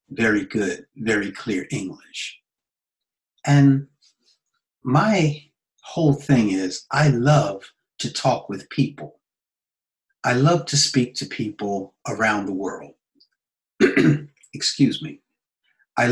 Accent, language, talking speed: American, English, 105 wpm